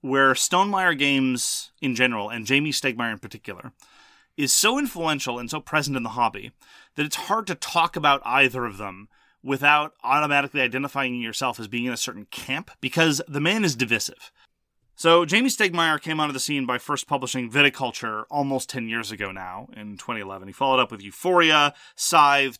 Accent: American